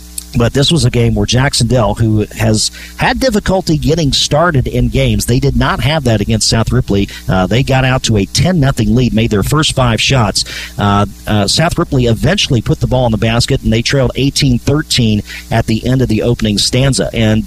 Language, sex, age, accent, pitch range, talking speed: English, male, 40-59, American, 115-145 Hz, 210 wpm